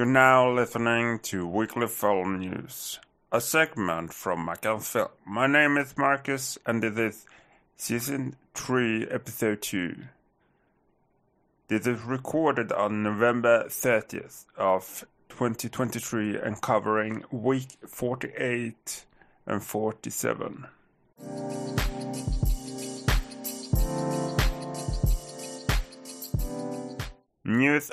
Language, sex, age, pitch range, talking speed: English, male, 30-49, 110-130 Hz, 80 wpm